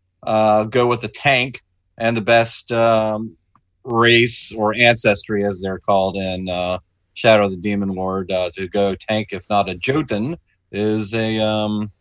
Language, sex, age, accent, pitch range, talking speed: English, male, 30-49, American, 105-125 Hz, 165 wpm